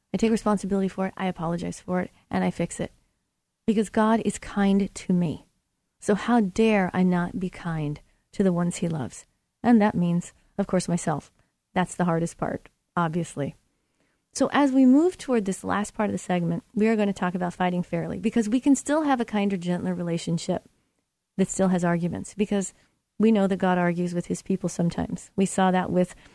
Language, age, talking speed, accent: English, 40-59, 200 wpm, American